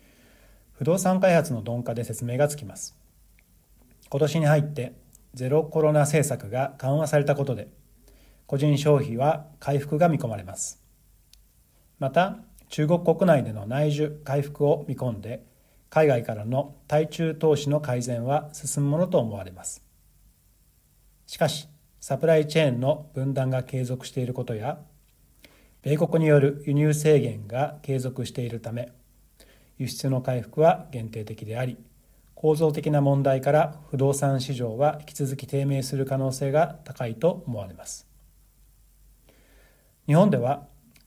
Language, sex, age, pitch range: Japanese, male, 40-59, 125-155 Hz